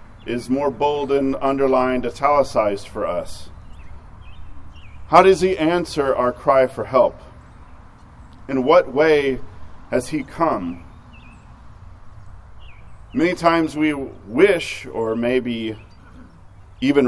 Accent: American